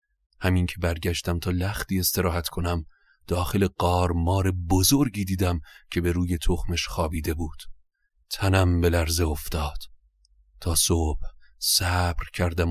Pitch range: 85-95 Hz